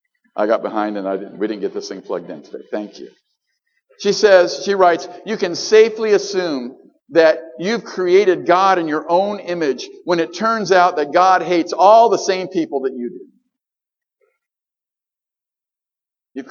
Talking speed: 170 wpm